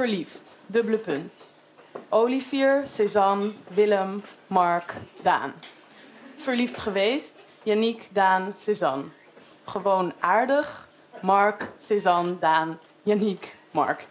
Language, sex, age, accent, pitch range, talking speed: Dutch, female, 20-39, Dutch, 190-255 Hz, 85 wpm